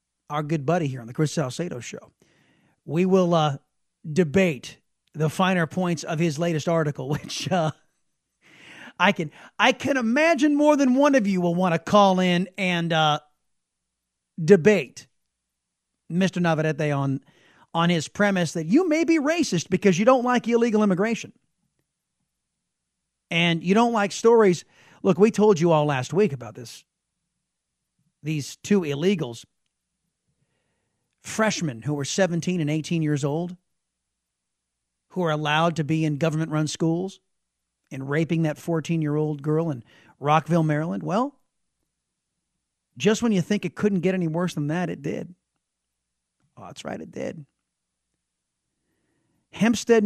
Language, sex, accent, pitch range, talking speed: English, male, American, 145-195 Hz, 140 wpm